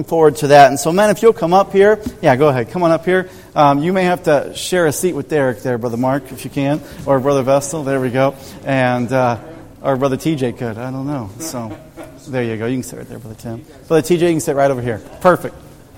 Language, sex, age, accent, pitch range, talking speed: English, male, 40-59, American, 135-175 Hz, 260 wpm